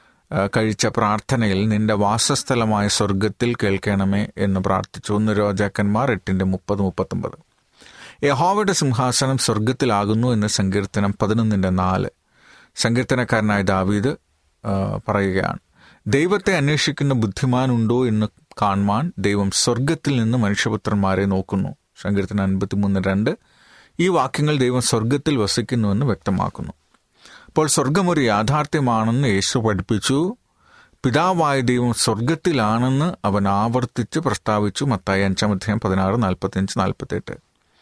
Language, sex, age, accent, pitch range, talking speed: Malayalam, male, 40-59, native, 100-130 Hz, 90 wpm